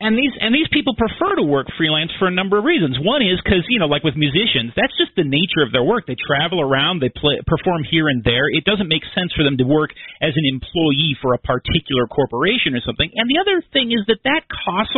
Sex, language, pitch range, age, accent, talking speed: male, English, 145-210 Hz, 40-59, American, 250 wpm